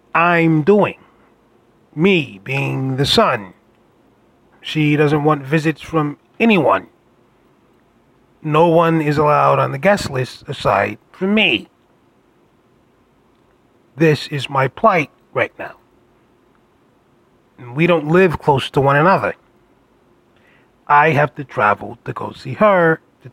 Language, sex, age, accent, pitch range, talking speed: English, male, 30-49, American, 135-175 Hz, 120 wpm